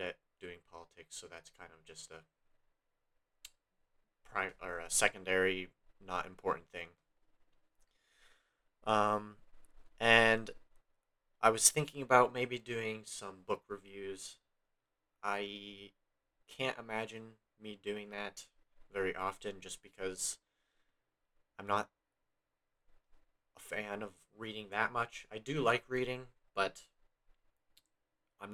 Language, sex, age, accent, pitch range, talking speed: English, male, 30-49, American, 90-110 Hz, 100 wpm